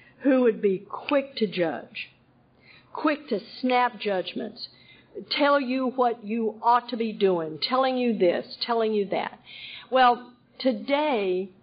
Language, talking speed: English, 135 wpm